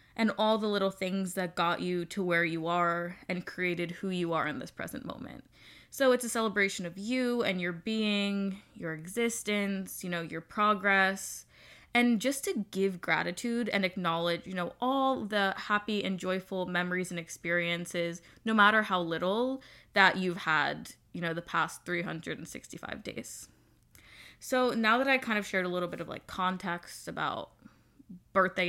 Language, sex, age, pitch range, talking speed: English, female, 10-29, 175-220 Hz, 170 wpm